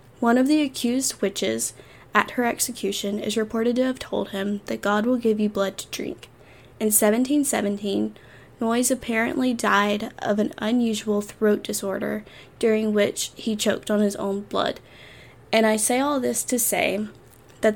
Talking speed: 160 wpm